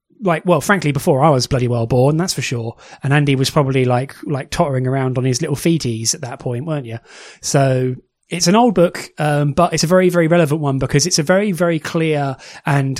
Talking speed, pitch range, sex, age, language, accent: 225 wpm, 140-170 Hz, male, 30-49, English, British